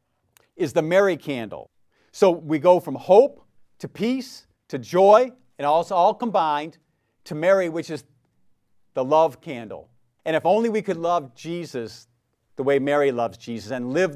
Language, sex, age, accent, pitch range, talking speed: English, male, 50-69, American, 135-180 Hz, 160 wpm